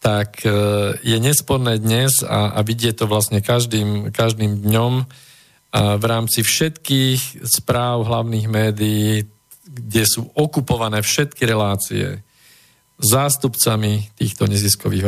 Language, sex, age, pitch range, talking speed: Slovak, male, 40-59, 100-120 Hz, 105 wpm